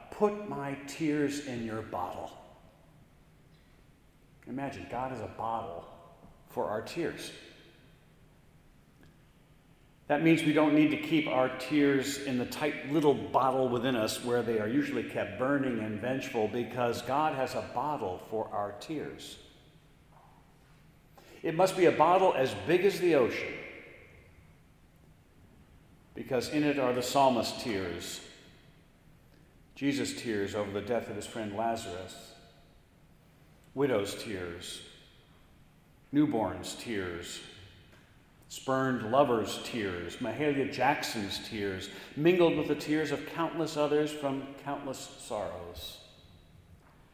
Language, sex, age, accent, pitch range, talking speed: English, male, 50-69, American, 115-150 Hz, 115 wpm